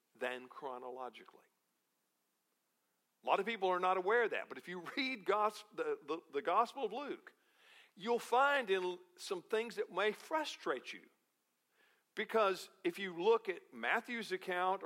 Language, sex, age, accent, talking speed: English, male, 50-69, American, 145 wpm